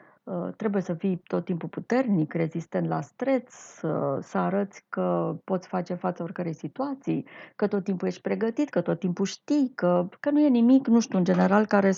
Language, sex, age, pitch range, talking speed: Romanian, female, 30-49, 180-260 Hz, 185 wpm